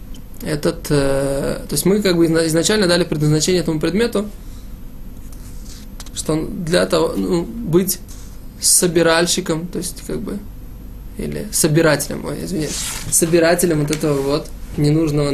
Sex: male